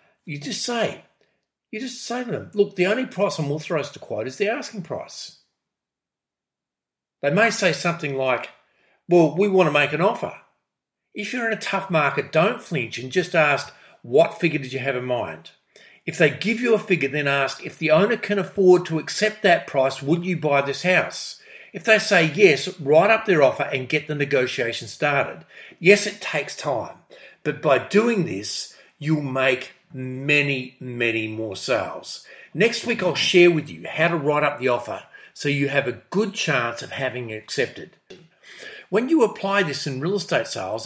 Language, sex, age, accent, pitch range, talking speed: English, male, 50-69, Australian, 140-195 Hz, 190 wpm